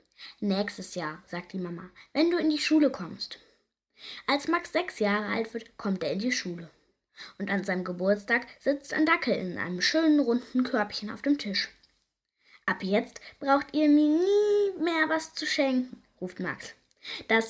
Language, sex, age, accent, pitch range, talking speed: German, female, 10-29, German, 200-285 Hz, 170 wpm